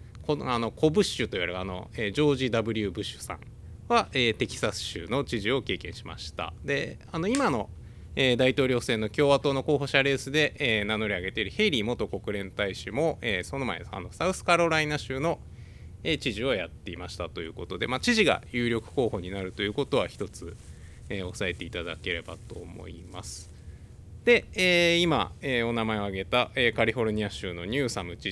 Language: Japanese